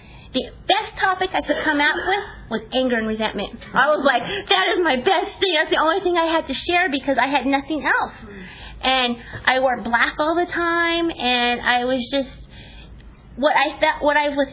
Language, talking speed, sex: English, 205 wpm, female